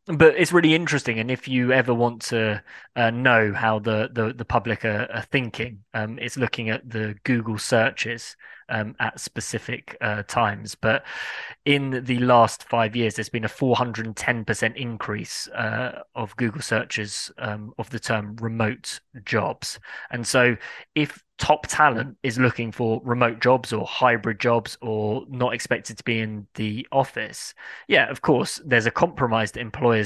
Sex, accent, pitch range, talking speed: male, British, 110-125 Hz, 160 wpm